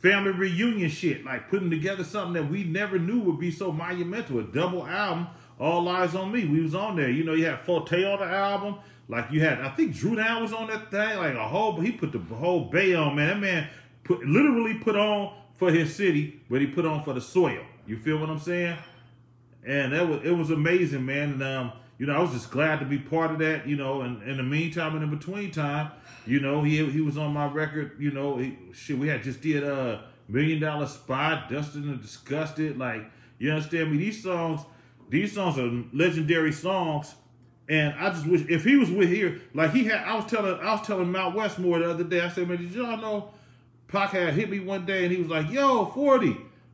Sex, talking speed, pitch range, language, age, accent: male, 230 wpm, 140-180 Hz, English, 30-49, American